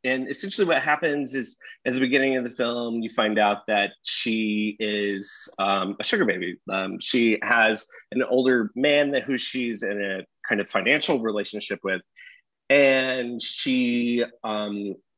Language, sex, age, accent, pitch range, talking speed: English, male, 30-49, American, 100-130 Hz, 160 wpm